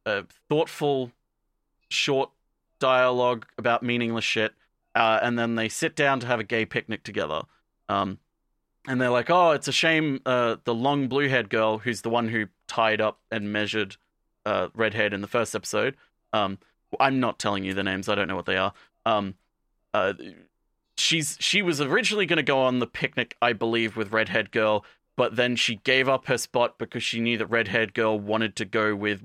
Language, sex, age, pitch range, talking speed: English, male, 30-49, 110-140 Hz, 190 wpm